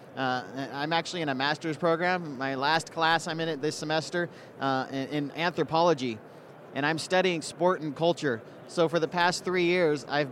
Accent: American